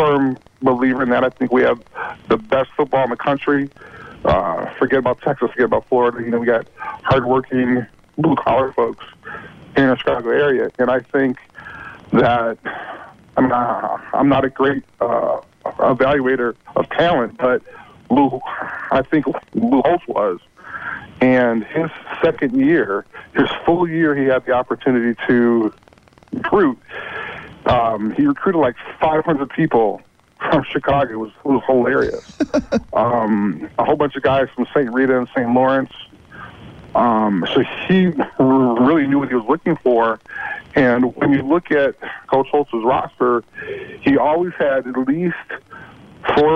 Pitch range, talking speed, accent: 125-145 Hz, 150 wpm, American